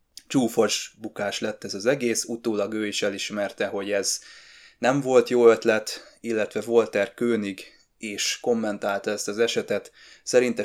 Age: 20-39